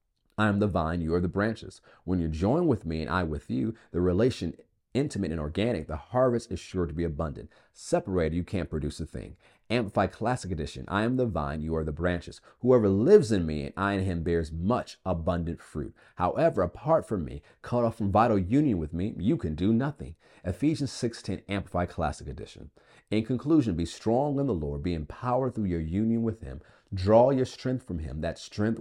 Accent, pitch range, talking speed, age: American, 80-110 Hz, 205 wpm, 40-59